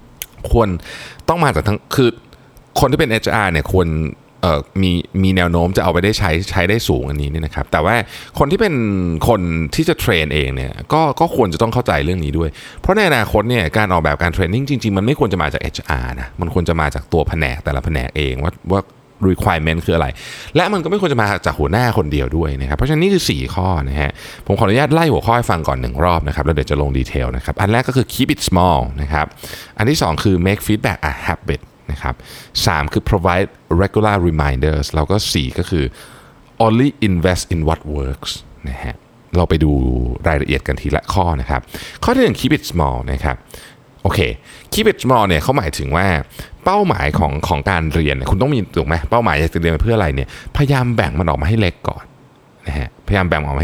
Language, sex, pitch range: Thai, male, 75-110 Hz